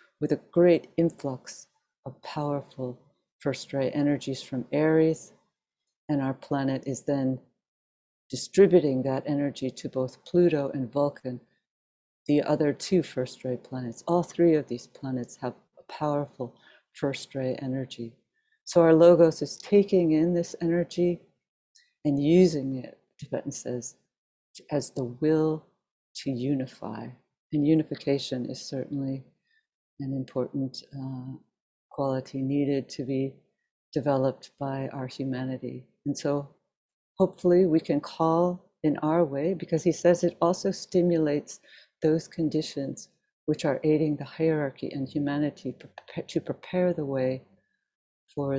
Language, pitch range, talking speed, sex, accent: English, 130-160 Hz, 125 wpm, female, American